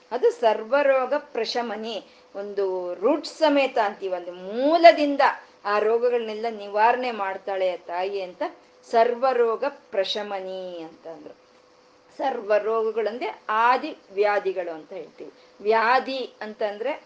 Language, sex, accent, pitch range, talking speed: Kannada, female, native, 200-265 Hz, 85 wpm